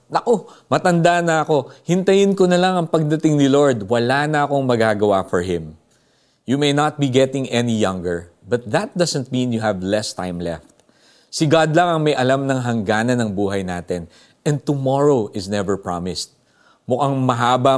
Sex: male